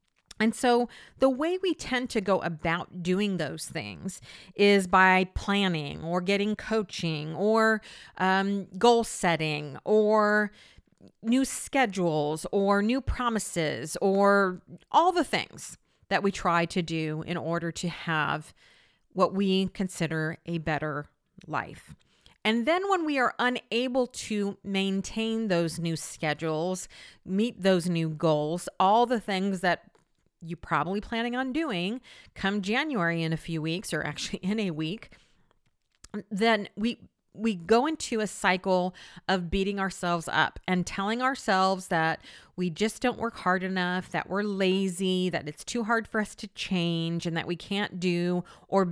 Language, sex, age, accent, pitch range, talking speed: English, female, 40-59, American, 170-220 Hz, 145 wpm